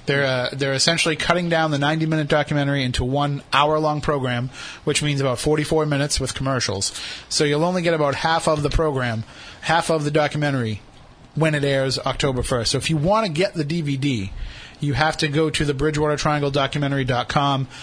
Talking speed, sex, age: 180 wpm, male, 30-49